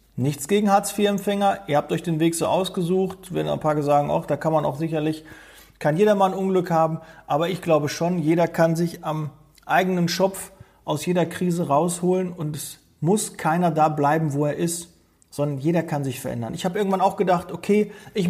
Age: 40-59